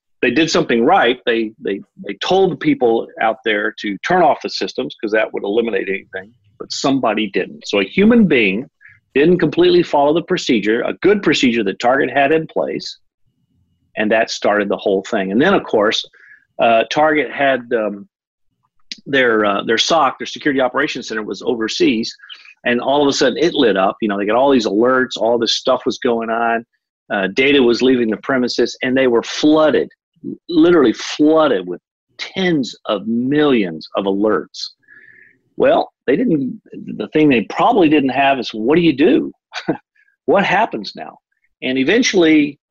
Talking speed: 175 wpm